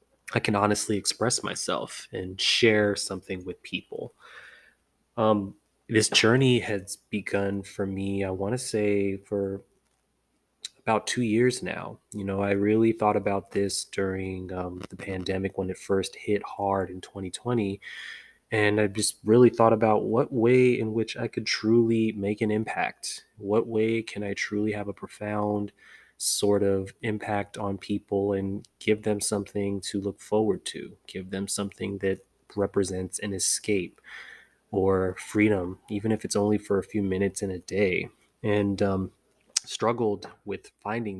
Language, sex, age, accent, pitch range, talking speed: English, male, 20-39, American, 95-105 Hz, 155 wpm